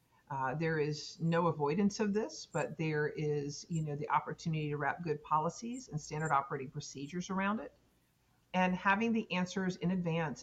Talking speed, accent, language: 175 wpm, American, English